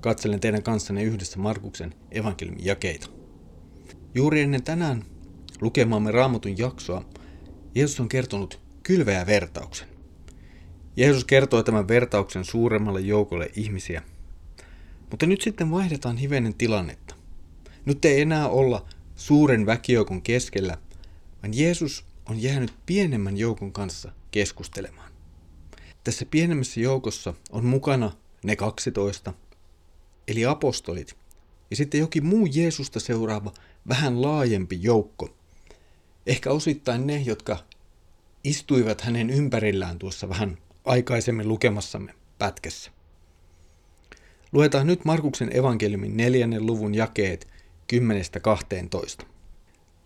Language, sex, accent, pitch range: Finnish, male, native, 85-125 Hz